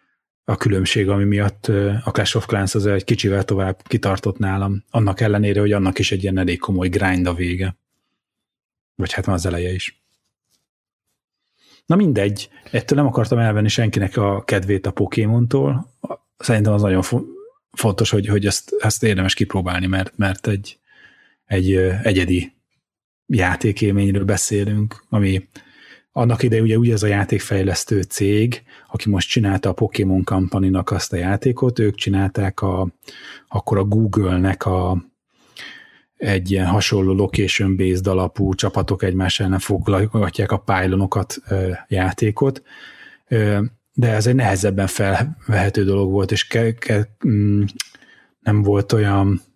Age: 30-49